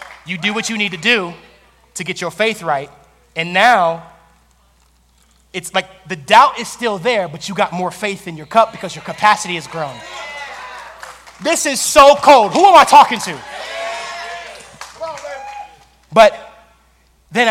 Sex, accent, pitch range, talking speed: male, American, 185-255 Hz, 155 wpm